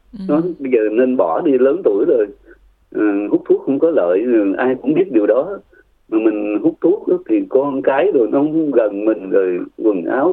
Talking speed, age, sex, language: 210 wpm, 30-49, male, Vietnamese